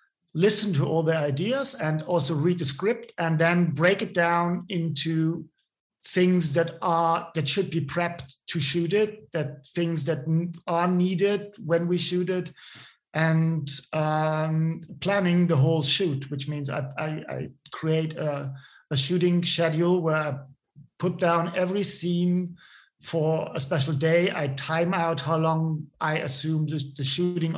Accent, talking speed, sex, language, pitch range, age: German, 155 wpm, male, English, 150-175 Hz, 50-69